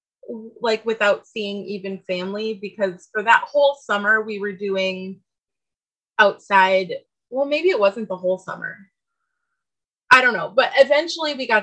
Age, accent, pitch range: 20-39, American, 185-225 Hz